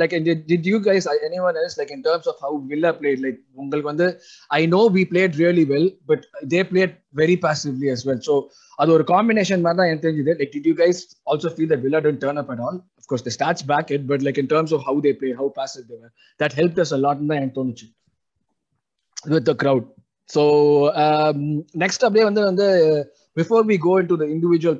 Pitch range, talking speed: 145-180 Hz, 215 wpm